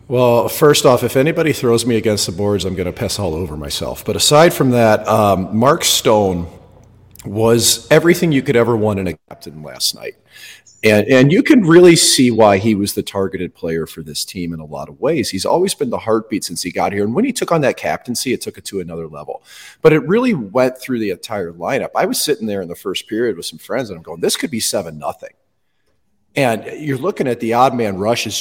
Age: 40-59